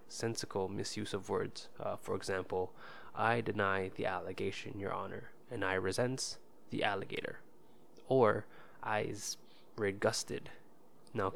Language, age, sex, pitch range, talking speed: English, 20-39, male, 100-115 Hz, 115 wpm